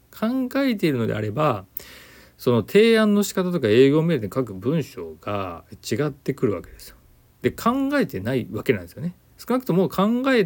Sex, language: male, Japanese